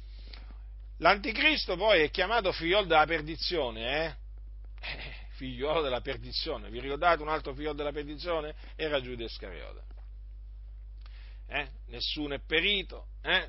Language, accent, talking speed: Italian, native, 110 wpm